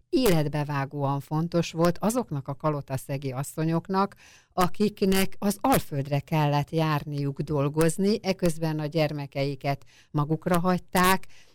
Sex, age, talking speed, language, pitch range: female, 50-69, 95 wpm, Hungarian, 140-160 Hz